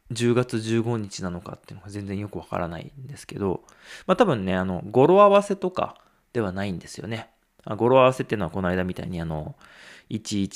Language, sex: Japanese, male